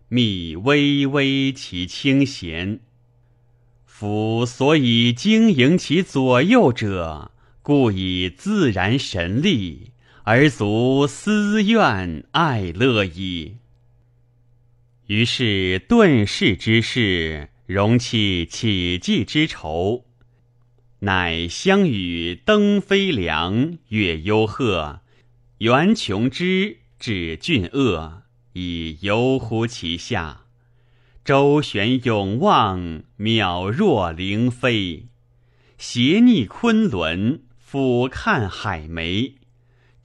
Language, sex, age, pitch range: Chinese, male, 30-49, 100-130 Hz